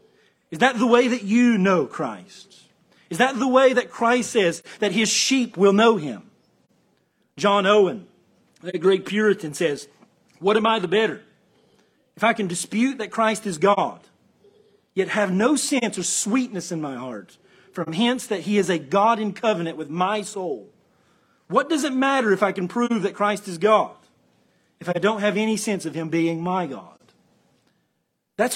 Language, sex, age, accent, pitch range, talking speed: English, male, 40-59, American, 190-235 Hz, 180 wpm